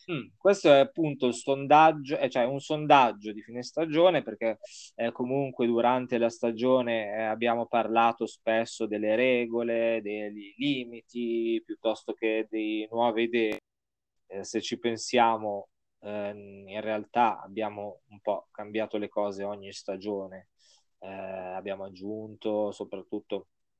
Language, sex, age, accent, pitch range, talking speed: Italian, male, 20-39, native, 105-125 Hz, 110 wpm